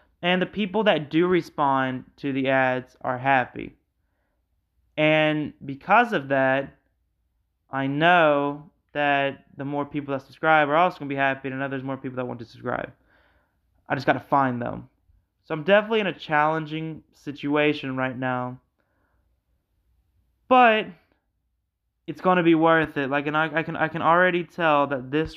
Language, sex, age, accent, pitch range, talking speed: English, male, 20-39, American, 130-160 Hz, 170 wpm